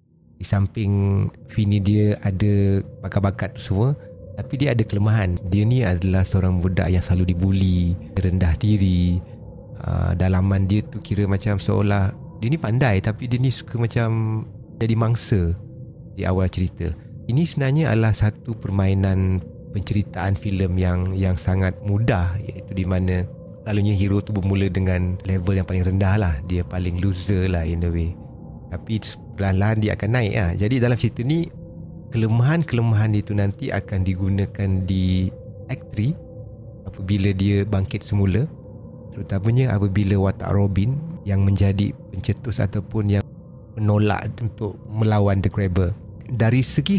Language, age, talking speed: Malay, 30-49, 140 wpm